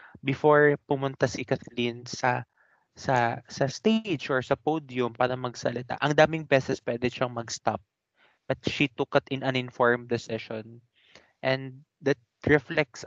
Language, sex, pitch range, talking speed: Filipino, male, 120-150 Hz, 140 wpm